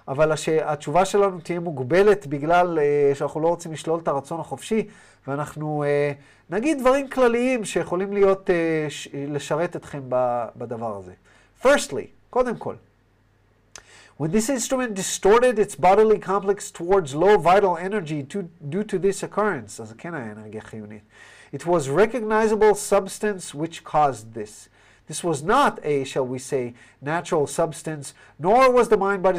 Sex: male